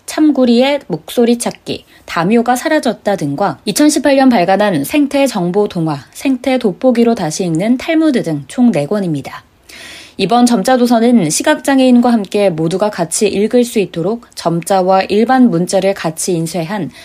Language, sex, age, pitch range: Korean, female, 20-39, 180-250 Hz